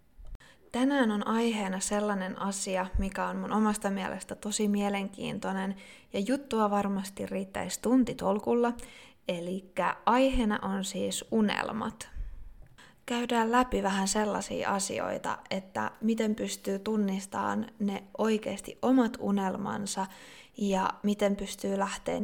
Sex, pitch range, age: female, 190-225 Hz, 20-39